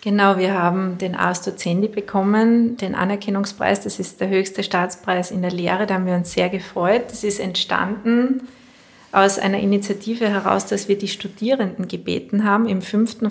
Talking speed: 170 wpm